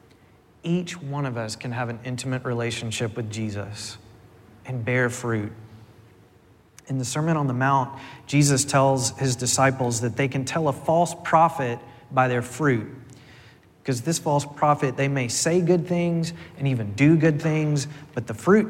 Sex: male